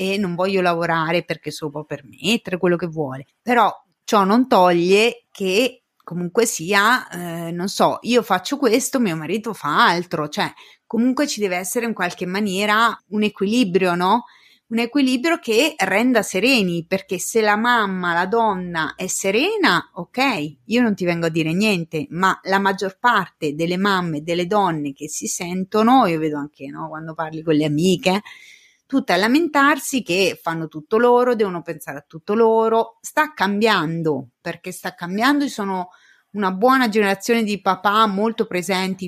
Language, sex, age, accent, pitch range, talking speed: Italian, female, 30-49, native, 175-230 Hz, 165 wpm